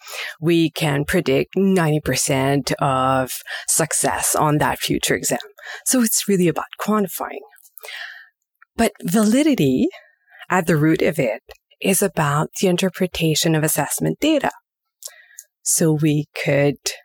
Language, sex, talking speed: English, female, 115 wpm